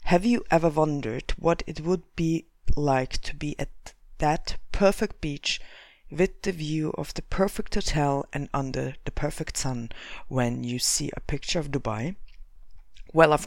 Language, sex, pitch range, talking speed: English, female, 125-165 Hz, 160 wpm